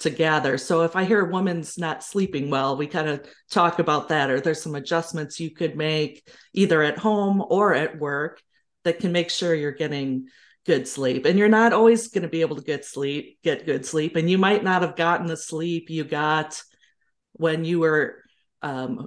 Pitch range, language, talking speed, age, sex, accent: 150-185 Hz, English, 205 wpm, 40-59, female, American